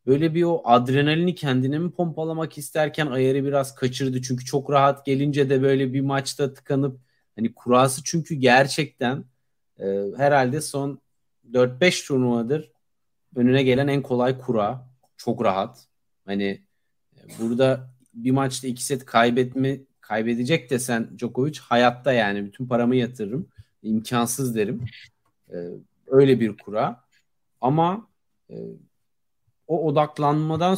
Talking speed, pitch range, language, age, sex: 120 wpm, 120-155 Hz, Turkish, 40-59, male